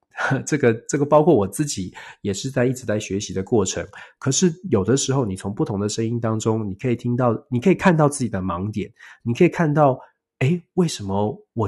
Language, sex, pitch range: Chinese, male, 100-130 Hz